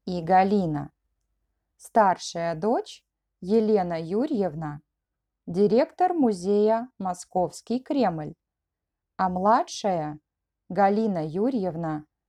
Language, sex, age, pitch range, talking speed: Russian, female, 20-39, 175-235 Hz, 70 wpm